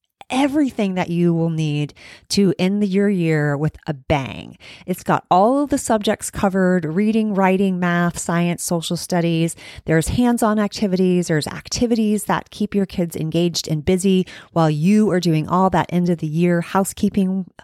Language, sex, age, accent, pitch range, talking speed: English, female, 30-49, American, 160-200 Hz, 155 wpm